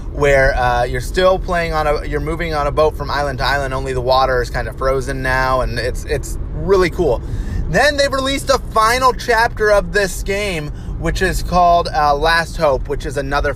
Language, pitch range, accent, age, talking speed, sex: English, 135-180 Hz, American, 30-49, 210 wpm, male